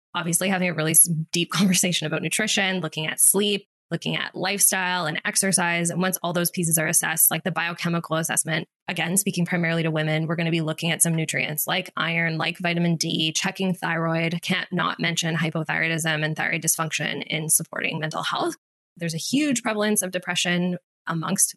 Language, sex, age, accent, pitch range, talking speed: English, female, 10-29, American, 160-190 Hz, 180 wpm